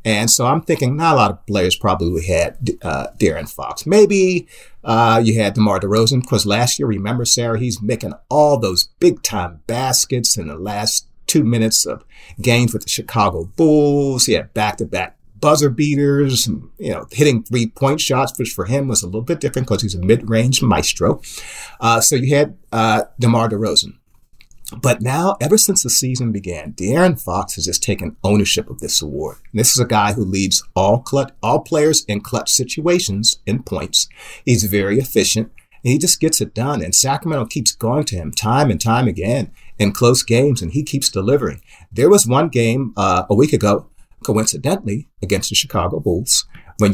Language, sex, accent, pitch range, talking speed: English, male, American, 105-135 Hz, 190 wpm